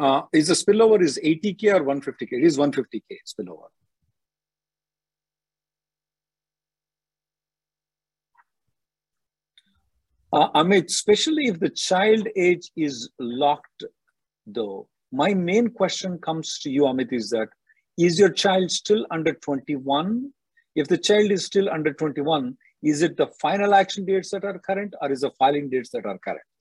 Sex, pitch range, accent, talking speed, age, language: male, 145-190 Hz, Indian, 140 wpm, 50-69, English